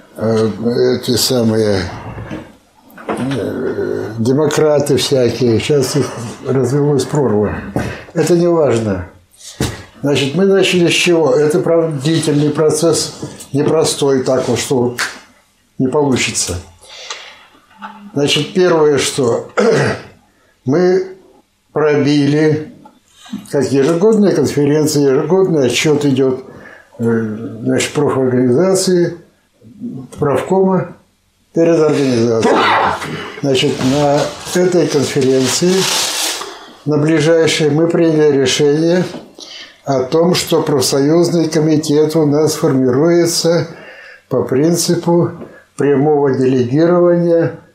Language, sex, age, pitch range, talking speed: Russian, male, 60-79, 130-165 Hz, 85 wpm